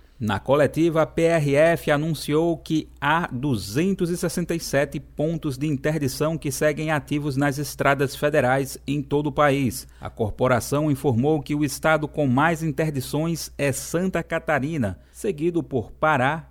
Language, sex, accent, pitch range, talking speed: Portuguese, male, Brazilian, 135-160 Hz, 130 wpm